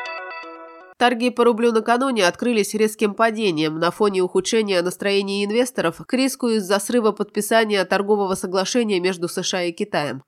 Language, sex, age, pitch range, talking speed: Russian, female, 20-39, 180-225 Hz, 135 wpm